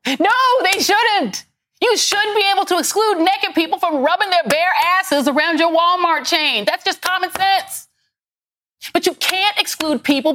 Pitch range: 230-345 Hz